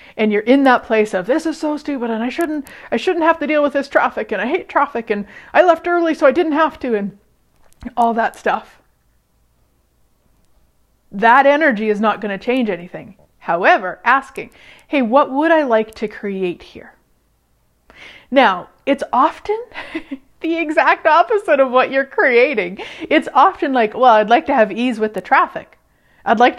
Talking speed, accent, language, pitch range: 180 wpm, American, English, 215-285 Hz